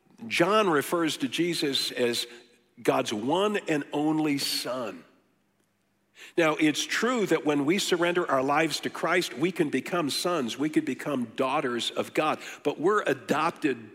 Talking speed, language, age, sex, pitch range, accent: 145 wpm, English, 50-69, male, 145-190 Hz, American